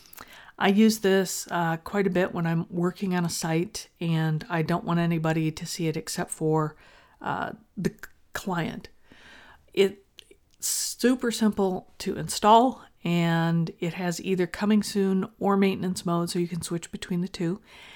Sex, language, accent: female, English, American